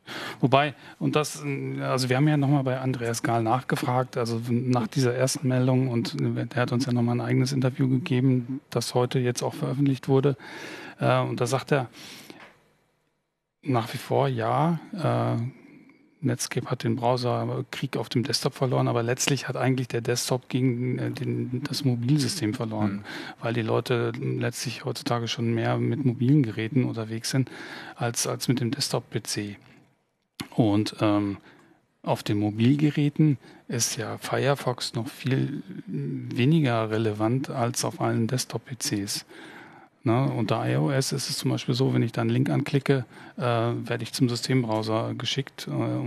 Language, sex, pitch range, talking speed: German, male, 115-135 Hz, 150 wpm